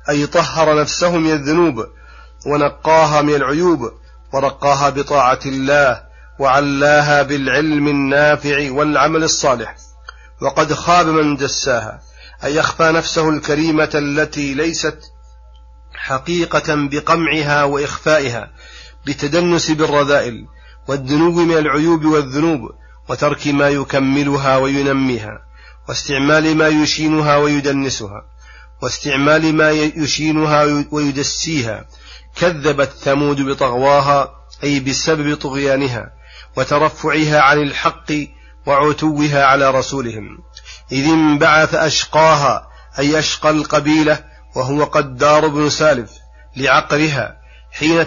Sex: male